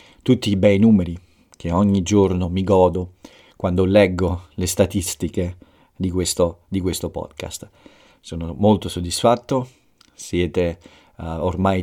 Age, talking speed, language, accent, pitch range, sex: 50-69, 110 wpm, Italian, native, 85-100 Hz, male